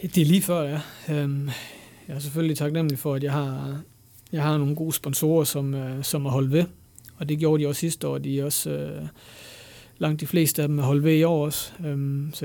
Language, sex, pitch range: Danish, male, 135-160 Hz